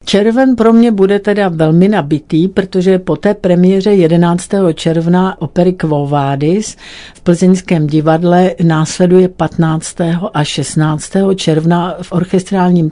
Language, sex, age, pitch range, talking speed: Czech, female, 60-79, 160-185 Hz, 120 wpm